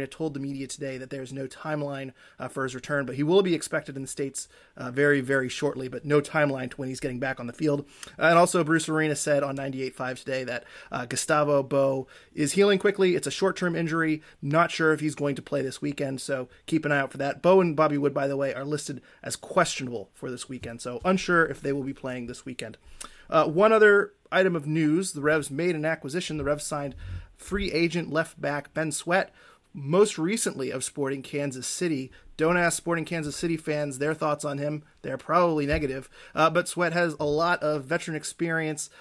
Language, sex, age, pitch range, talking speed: English, male, 30-49, 140-165 Hz, 215 wpm